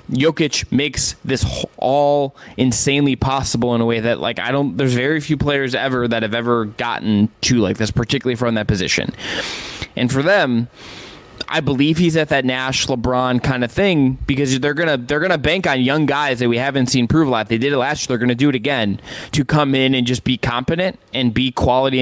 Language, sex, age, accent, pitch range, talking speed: English, male, 20-39, American, 120-145 Hz, 220 wpm